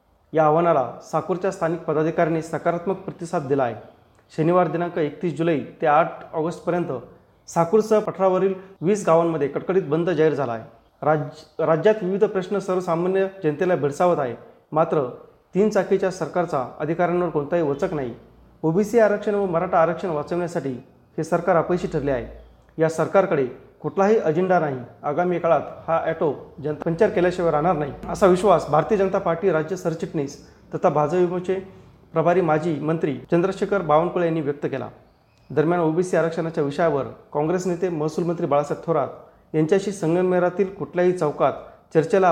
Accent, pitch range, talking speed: native, 155-185 Hz, 140 wpm